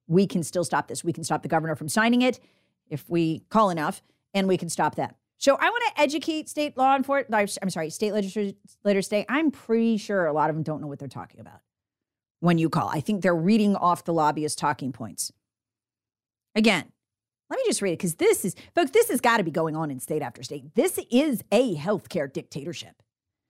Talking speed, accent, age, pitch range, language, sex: 220 wpm, American, 40-59, 150-250 Hz, English, female